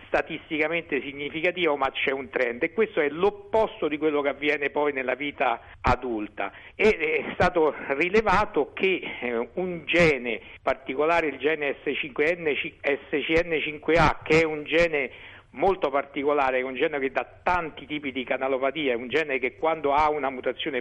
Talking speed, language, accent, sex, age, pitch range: 150 wpm, Italian, native, male, 50-69, 135-175 Hz